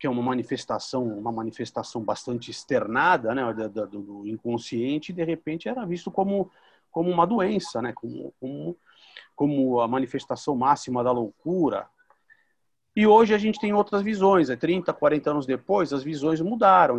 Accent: Brazilian